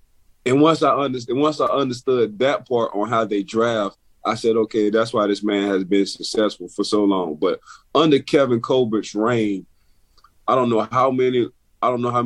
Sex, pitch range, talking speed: male, 100-120 Hz, 195 wpm